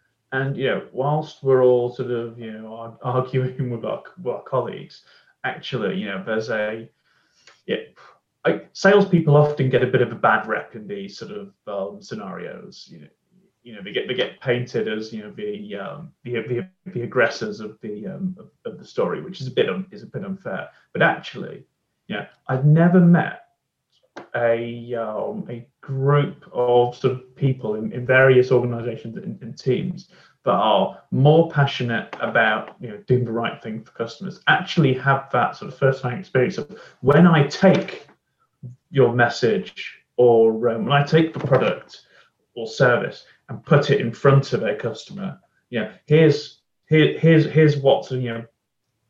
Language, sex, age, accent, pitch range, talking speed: English, male, 30-49, British, 120-165 Hz, 175 wpm